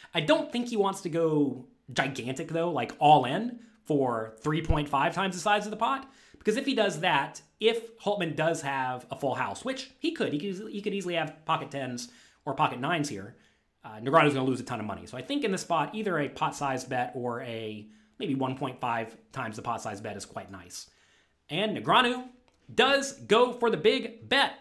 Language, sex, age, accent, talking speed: English, male, 30-49, American, 200 wpm